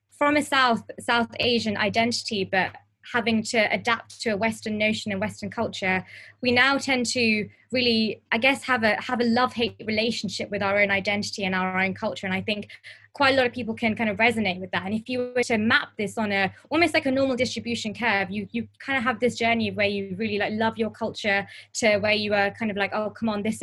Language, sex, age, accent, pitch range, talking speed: English, female, 20-39, British, 200-235 Hz, 235 wpm